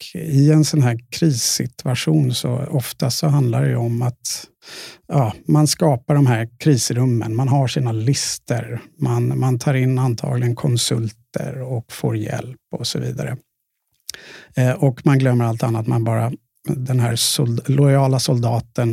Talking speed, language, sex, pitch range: 150 wpm, Swedish, male, 120-145 Hz